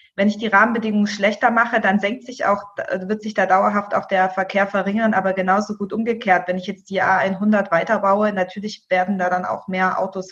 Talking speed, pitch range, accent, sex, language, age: 205 wpm, 190-220 Hz, German, female, German, 20-39